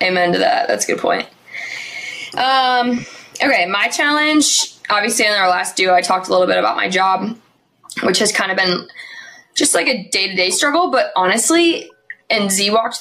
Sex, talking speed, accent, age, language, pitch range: female, 180 wpm, American, 20-39, English, 185-245 Hz